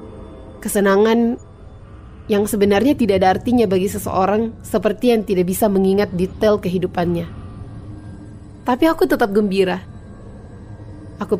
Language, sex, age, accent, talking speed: Indonesian, female, 30-49, native, 105 wpm